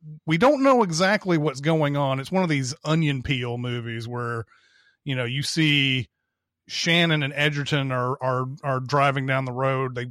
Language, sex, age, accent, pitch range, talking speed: English, male, 30-49, American, 125-150 Hz, 180 wpm